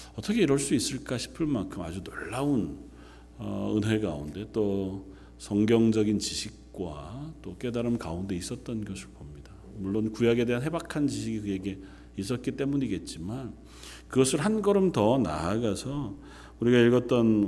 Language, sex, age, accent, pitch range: Korean, male, 40-59, native, 95-145 Hz